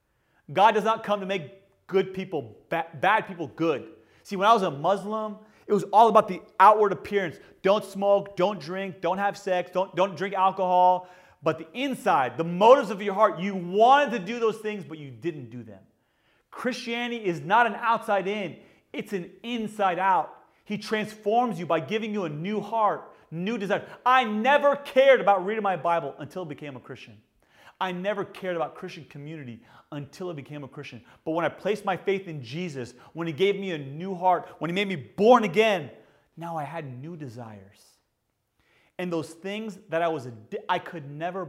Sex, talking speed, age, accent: male, 190 wpm, 30-49, American